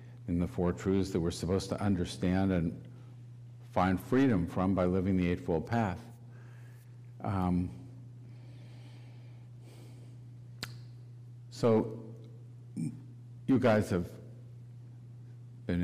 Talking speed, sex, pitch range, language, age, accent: 90 wpm, male, 100-120 Hz, English, 50-69, American